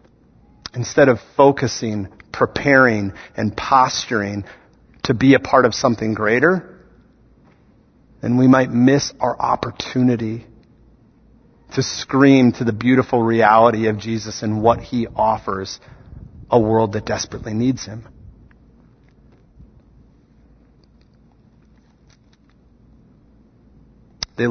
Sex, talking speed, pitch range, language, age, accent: male, 95 wpm, 105-125 Hz, English, 40-59, American